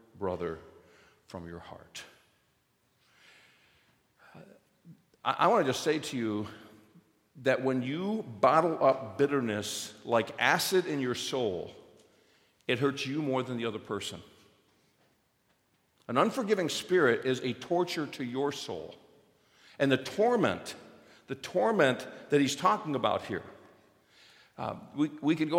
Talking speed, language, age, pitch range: 130 wpm, English, 50-69, 130-190 Hz